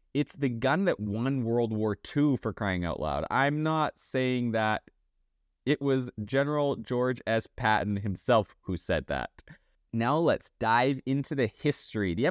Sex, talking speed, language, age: male, 160 wpm, English, 20-39